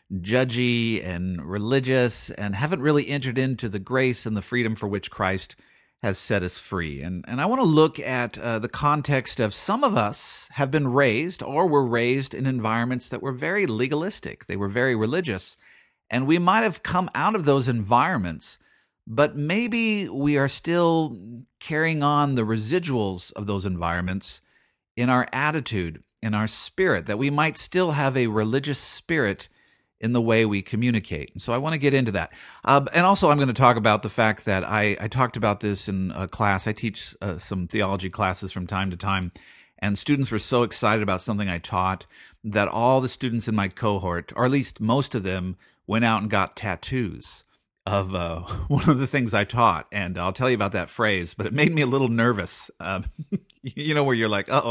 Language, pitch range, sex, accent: English, 100-135 Hz, male, American